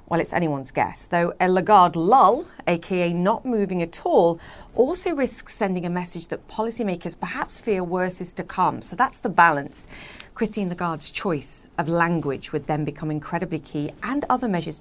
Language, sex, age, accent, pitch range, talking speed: English, female, 40-59, British, 160-200 Hz, 175 wpm